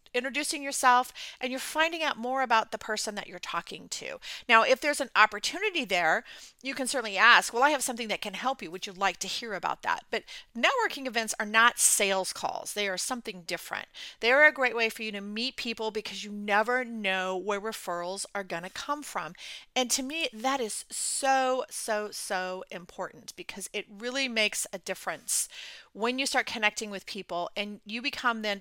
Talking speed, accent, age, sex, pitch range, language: 200 wpm, American, 40-59, female, 200-260 Hz, English